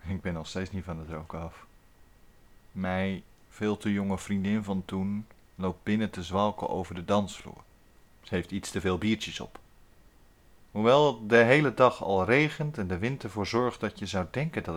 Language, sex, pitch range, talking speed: Dutch, male, 95-130 Hz, 185 wpm